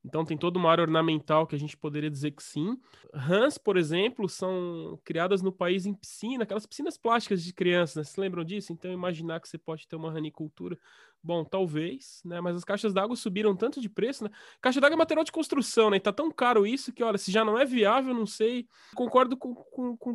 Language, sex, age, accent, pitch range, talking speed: Portuguese, male, 20-39, Brazilian, 160-210 Hz, 220 wpm